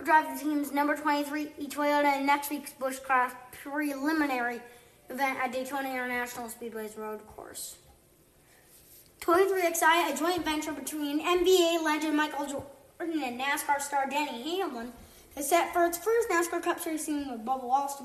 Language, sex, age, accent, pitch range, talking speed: English, female, 20-39, American, 250-295 Hz, 155 wpm